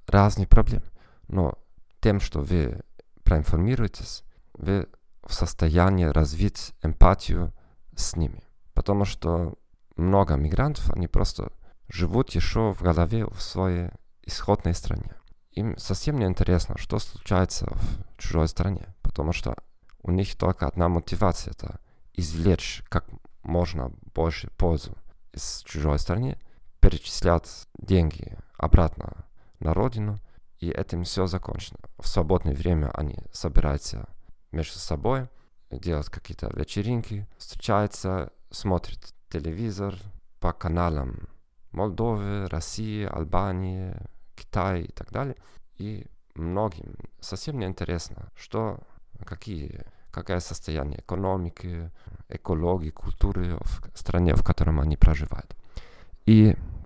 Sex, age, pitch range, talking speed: male, 40-59, 85-100 Hz, 110 wpm